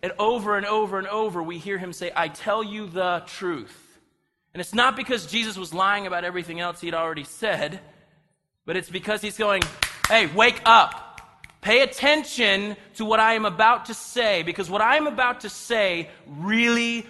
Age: 30-49